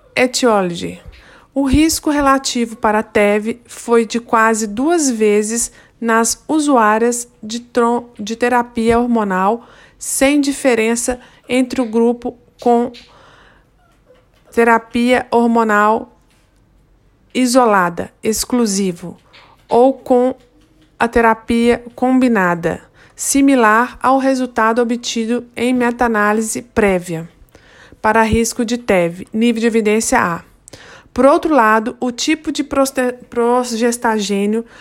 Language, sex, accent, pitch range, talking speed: Portuguese, female, Brazilian, 225-260 Hz, 95 wpm